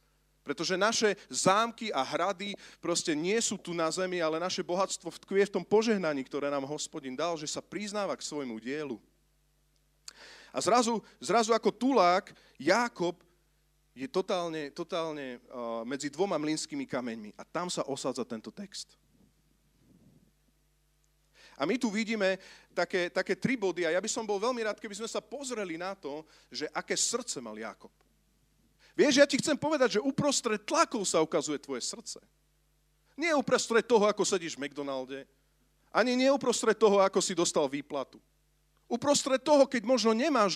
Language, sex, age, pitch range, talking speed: Slovak, male, 40-59, 175-230 Hz, 155 wpm